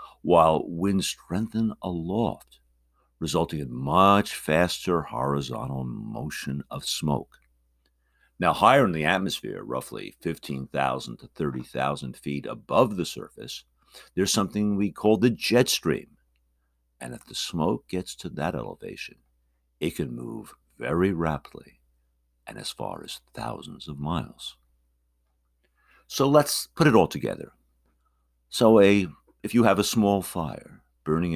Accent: American